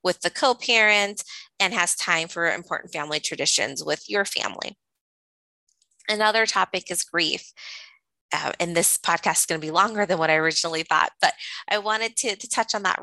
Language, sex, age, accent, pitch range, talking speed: English, female, 20-39, American, 165-210 Hz, 180 wpm